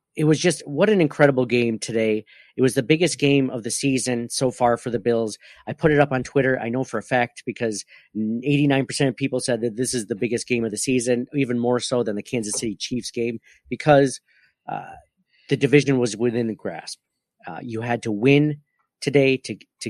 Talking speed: 215 wpm